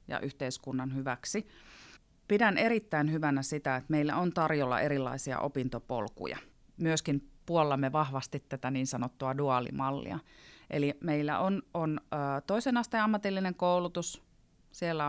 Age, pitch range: 30-49, 135-175 Hz